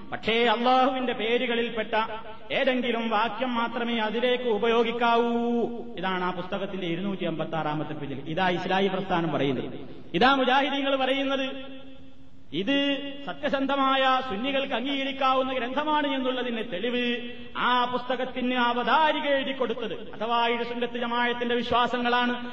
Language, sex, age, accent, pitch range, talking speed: Malayalam, male, 30-49, native, 215-260 Hz, 95 wpm